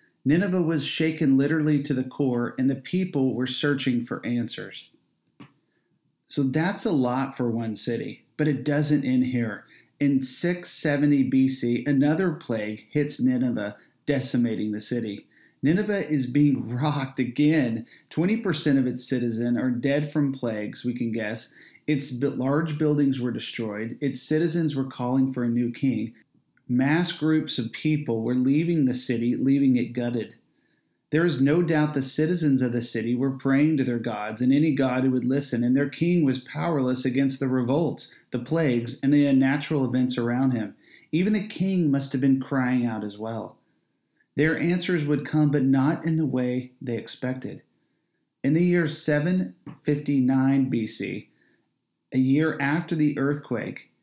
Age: 40-59